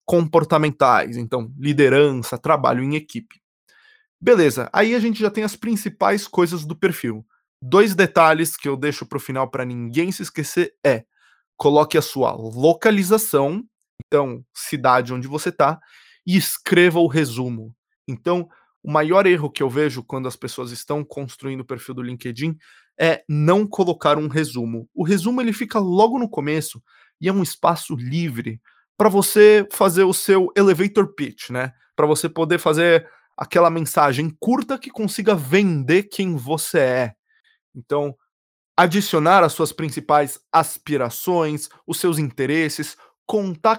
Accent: Brazilian